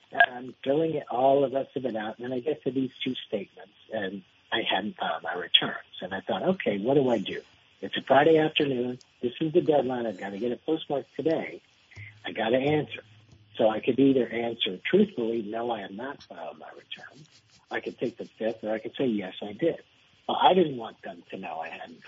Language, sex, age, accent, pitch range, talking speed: English, male, 60-79, American, 115-150 Hz, 230 wpm